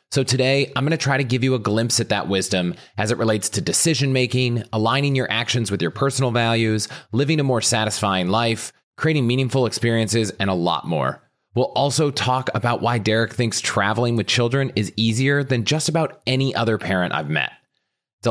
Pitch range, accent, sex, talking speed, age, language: 95-130 Hz, American, male, 195 wpm, 30-49, English